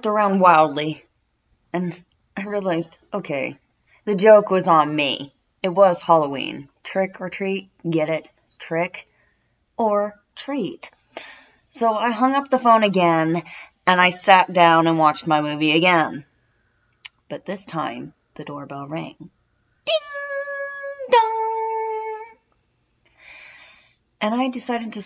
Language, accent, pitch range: English, American, 155-260 Hz